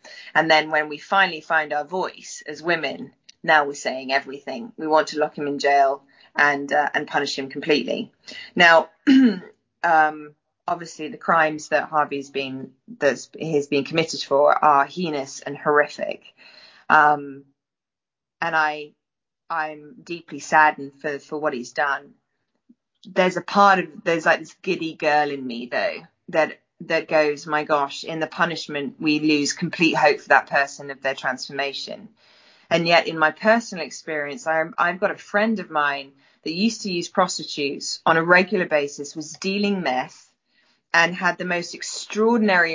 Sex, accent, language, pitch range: female, British, English, 145-185 Hz